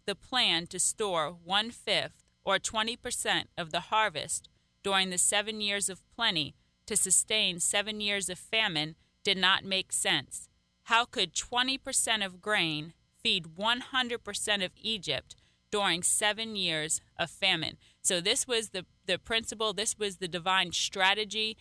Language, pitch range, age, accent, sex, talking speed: English, 170-210 Hz, 30-49, American, female, 140 wpm